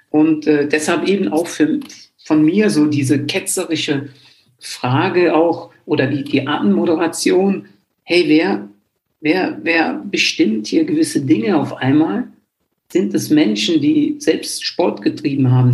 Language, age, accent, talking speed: German, 50-69, German, 135 wpm